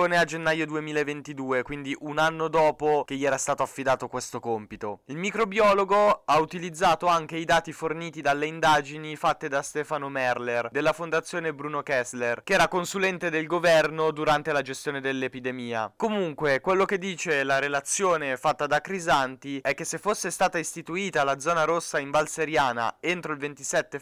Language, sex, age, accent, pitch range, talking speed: Italian, male, 20-39, native, 135-165 Hz, 160 wpm